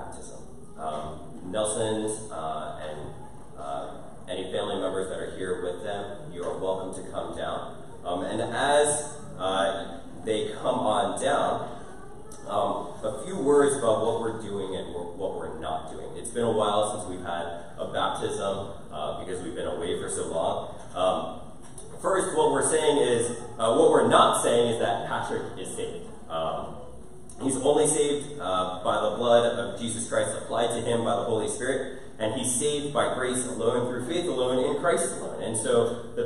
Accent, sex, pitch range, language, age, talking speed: American, male, 95-145 Hz, English, 30-49, 165 wpm